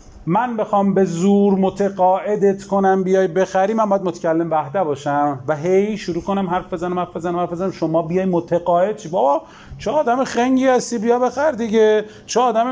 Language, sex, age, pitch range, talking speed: Persian, male, 40-59, 135-195 Hz, 170 wpm